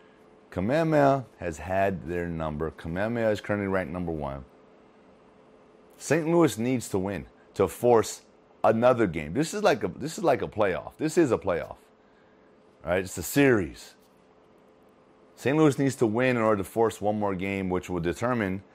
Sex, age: male, 30-49